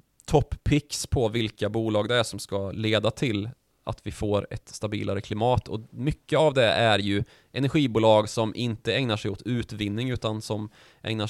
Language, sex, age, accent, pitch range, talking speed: Swedish, male, 20-39, native, 105-125 Hz, 170 wpm